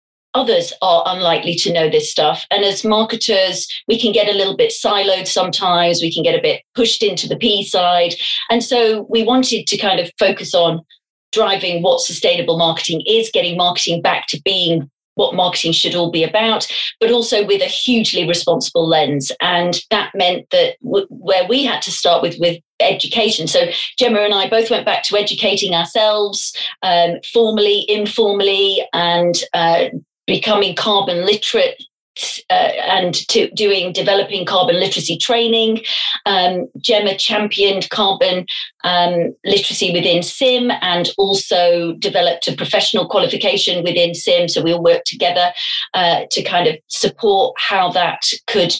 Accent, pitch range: British, 175-220 Hz